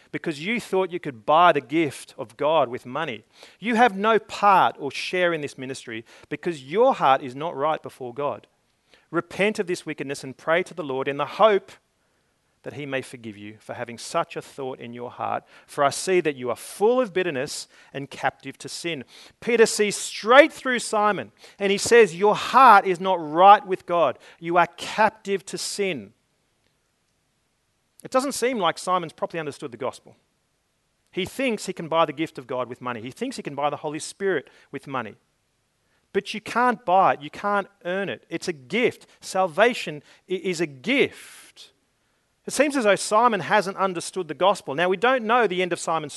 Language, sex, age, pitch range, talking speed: English, male, 40-59, 145-200 Hz, 195 wpm